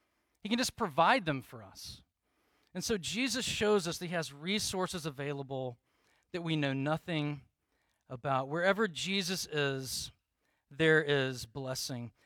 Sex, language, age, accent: male, English, 40-59, American